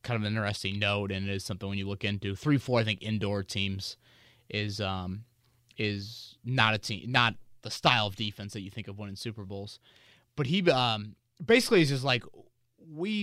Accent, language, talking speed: American, English, 205 wpm